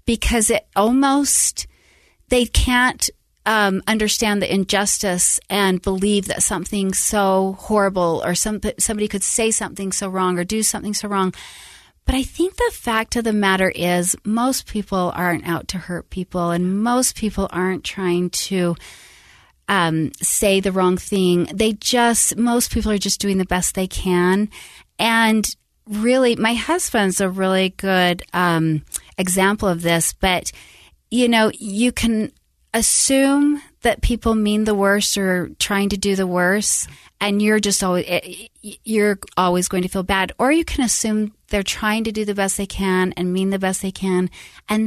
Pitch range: 180-220 Hz